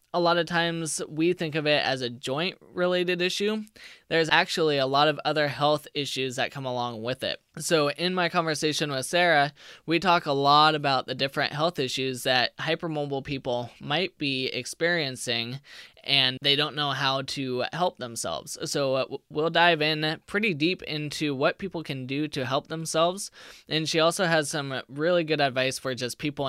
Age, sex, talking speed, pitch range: 20-39, male, 180 wpm, 135-160 Hz